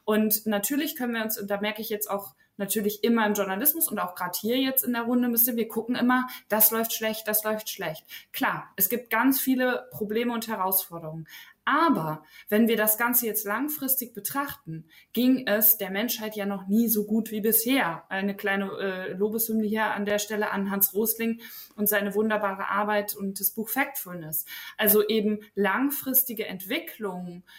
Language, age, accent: German, 20-39, German